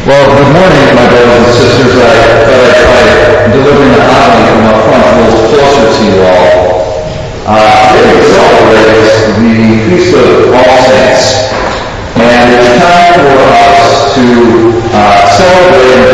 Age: 40-59